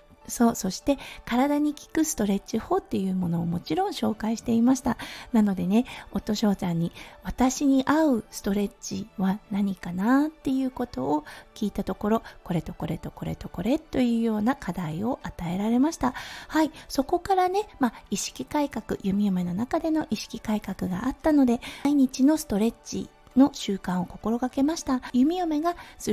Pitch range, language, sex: 205-280 Hz, Japanese, female